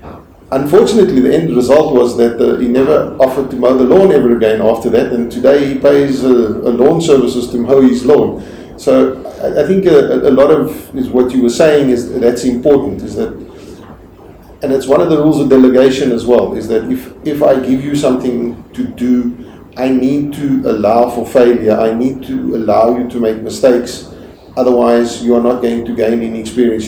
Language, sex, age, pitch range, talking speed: English, male, 50-69, 110-130 Hz, 200 wpm